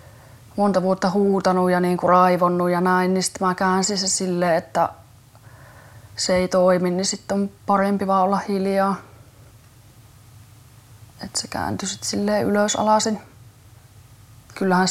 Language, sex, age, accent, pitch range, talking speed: Finnish, female, 20-39, native, 120-195 Hz, 130 wpm